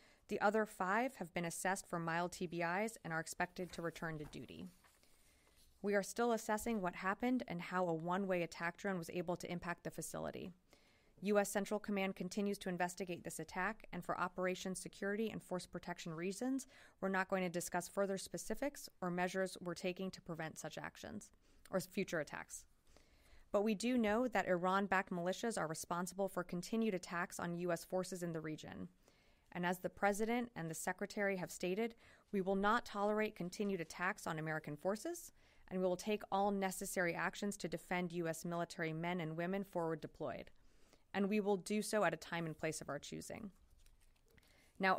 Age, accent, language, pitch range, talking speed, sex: 20-39, American, English, 175-205 Hz, 180 wpm, female